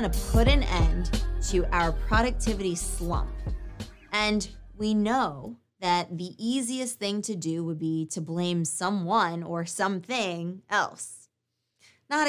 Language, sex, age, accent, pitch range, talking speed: English, female, 20-39, American, 170-220 Hz, 125 wpm